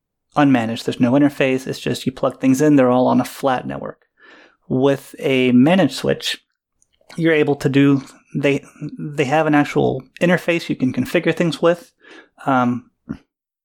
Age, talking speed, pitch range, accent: 30-49, 160 wpm, 125-150 Hz, American